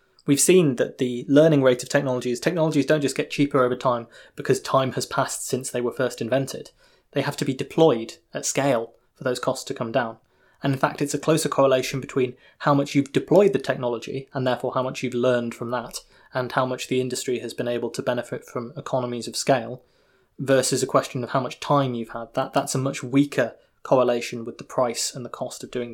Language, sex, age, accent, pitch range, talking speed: English, male, 20-39, British, 120-145 Hz, 220 wpm